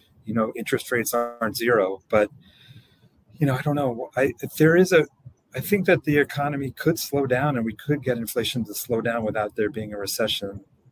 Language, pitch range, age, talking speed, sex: English, 110-140 Hz, 40-59, 210 wpm, male